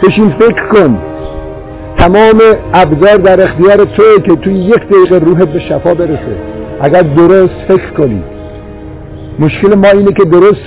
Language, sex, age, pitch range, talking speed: Persian, male, 50-69, 120-175 Hz, 140 wpm